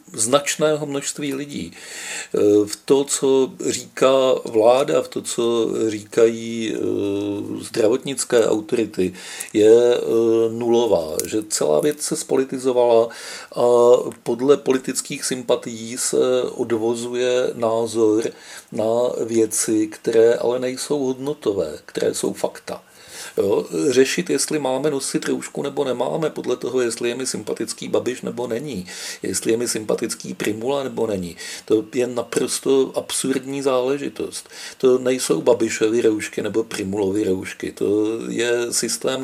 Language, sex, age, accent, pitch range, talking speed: Czech, male, 50-69, native, 115-140 Hz, 115 wpm